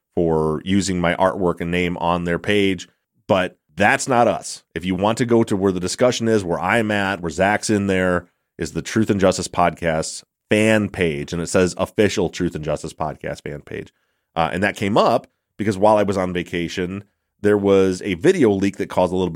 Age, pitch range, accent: 30-49, 85-105 Hz, American